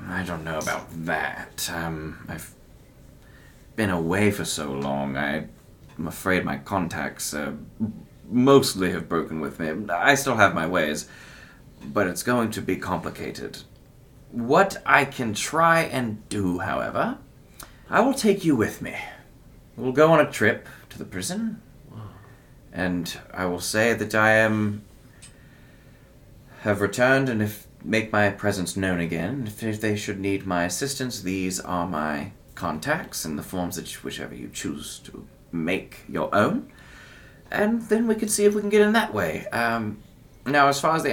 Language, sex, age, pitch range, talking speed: English, male, 30-49, 90-140 Hz, 160 wpm